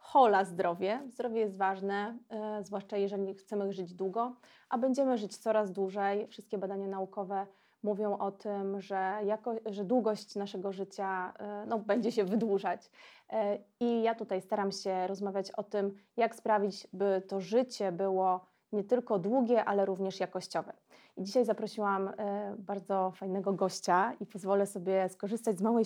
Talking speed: 140 wpm